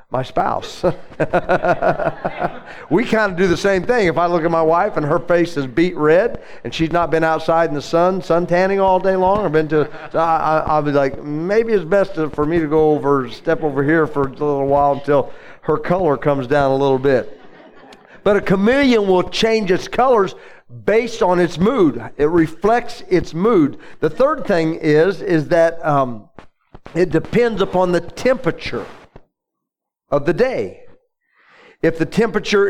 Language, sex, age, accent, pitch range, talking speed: English, male, 50-69, American, 150-190 Hz, 180 wpm